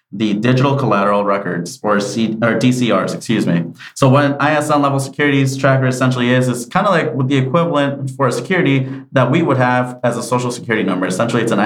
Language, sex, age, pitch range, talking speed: English, male, 30-49, 110-135 Hz, 205 wpm